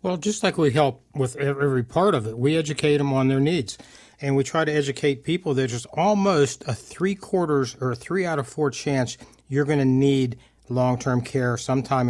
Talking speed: 185 wpm